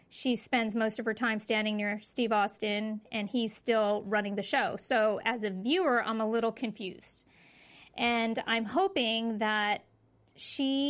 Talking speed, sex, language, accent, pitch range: 160 wpm, female, English, American, 215-265 Hz